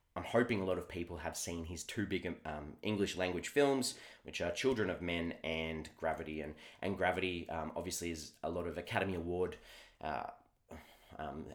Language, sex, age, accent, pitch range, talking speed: English, male, 20-39, Australian, 80-95 Hz, 180 wpm